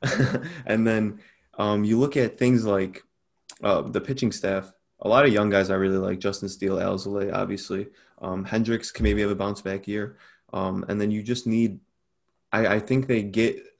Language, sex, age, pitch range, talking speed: English, male, 20-39, 100-115 Hz, 190 wpm